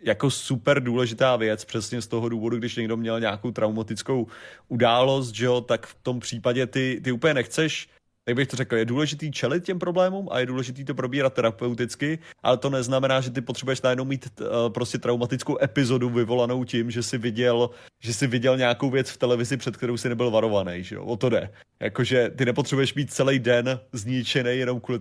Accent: native